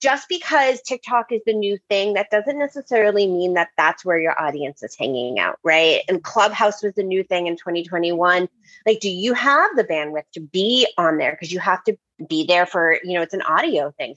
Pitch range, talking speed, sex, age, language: 170-275 Hz, 215 wpm, female, 30-49, English